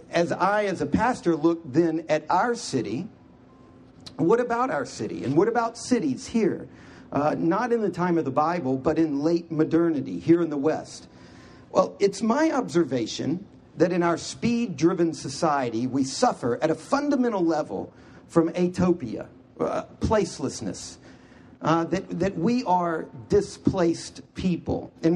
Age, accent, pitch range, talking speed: 50-69, American, 155-180 Hz, 150 wpm